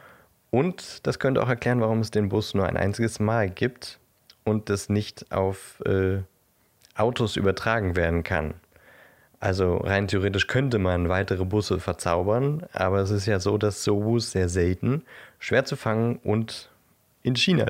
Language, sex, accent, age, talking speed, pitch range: German, male, German, 30-49, 155 wpm, 95-115 Hz